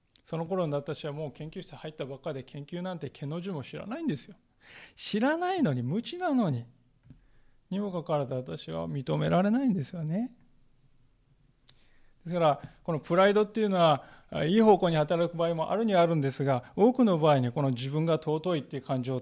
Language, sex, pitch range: Japanese, male, 130-170 Hz